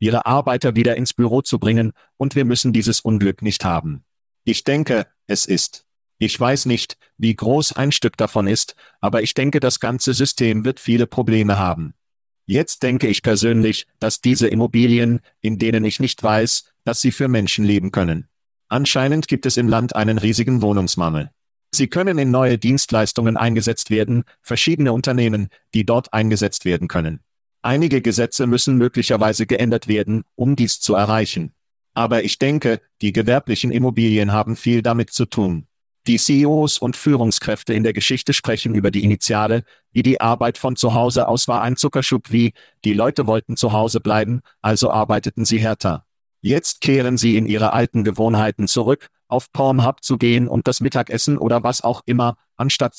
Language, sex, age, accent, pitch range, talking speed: German, male, 50-69, German, 110-125 Hz, 170 wpm